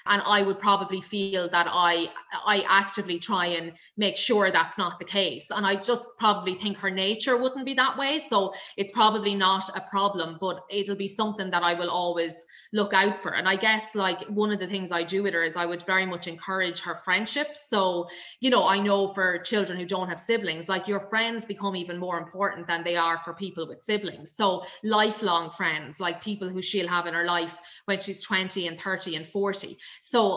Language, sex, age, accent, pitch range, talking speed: English, female, 20-39, Irish, 175-200 Hz, 215 wpm